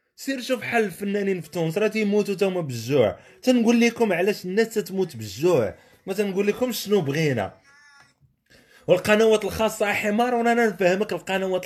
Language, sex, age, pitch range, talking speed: Arabic, male, 30-49, 165-230 Hz, 140 wpm